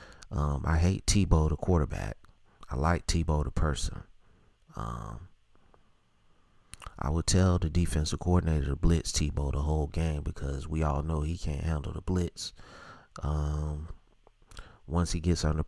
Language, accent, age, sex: English, American, 30-49, male